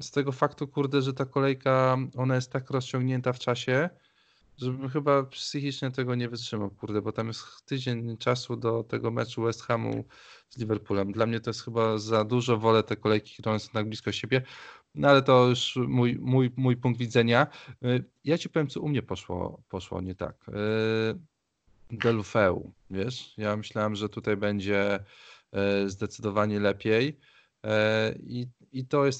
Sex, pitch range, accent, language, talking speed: male, 105-130 Hz, native, Polish, 160 wpm